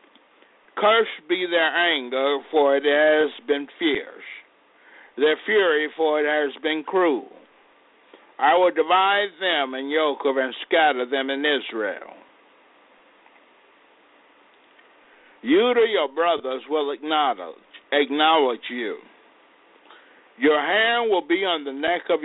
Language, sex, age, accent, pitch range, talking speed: English, male, 60-79, American, 145-200 Hz, 115 wpm